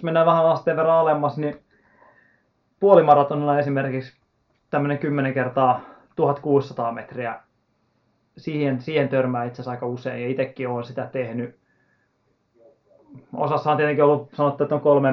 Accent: native